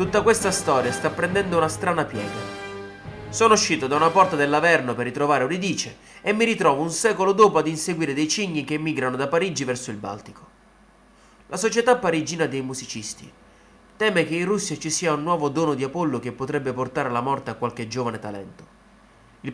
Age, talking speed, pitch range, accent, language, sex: 30-49, 185 wpm, 125-180 Hz, native, Italian, male